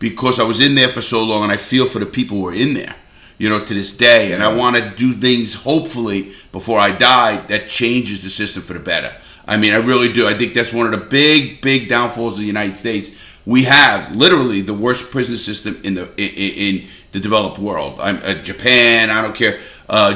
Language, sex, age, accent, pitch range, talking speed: English, male, 40-59, American, 105-140 Hz, 235 wpm